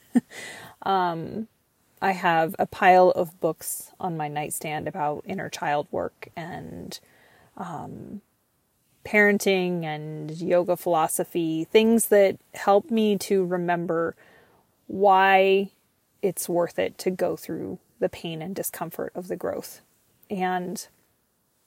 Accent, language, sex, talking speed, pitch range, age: American, English, female, 115 wpm, 165-195 Hz, 30-49